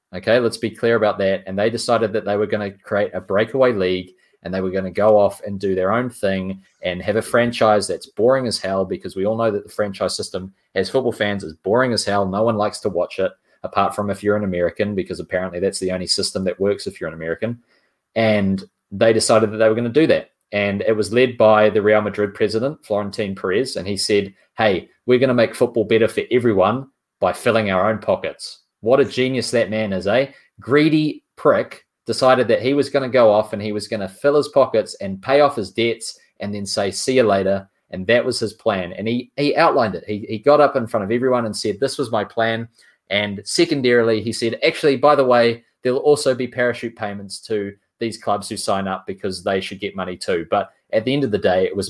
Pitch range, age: 100-120 Hz, 20-39